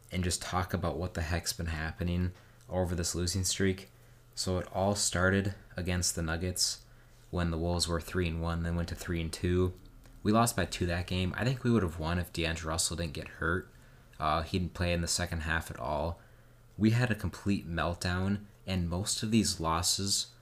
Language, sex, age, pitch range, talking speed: English, male, 20-39, 85-110 Hz, 205 wpm